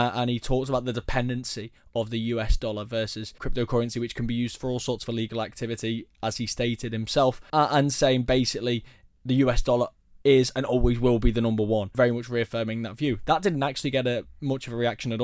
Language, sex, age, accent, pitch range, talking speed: English, male, 20-39, British, 115-135 Hz, 225 wpm